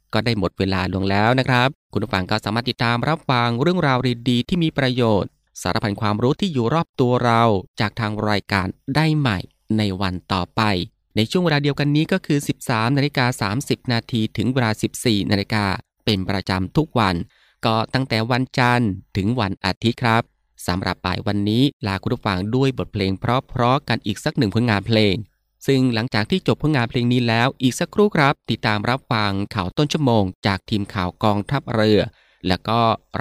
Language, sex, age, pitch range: Thai, male, 20-39, 100-130 Hz